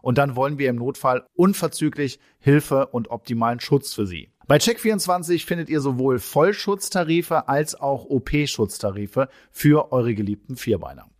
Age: 40-59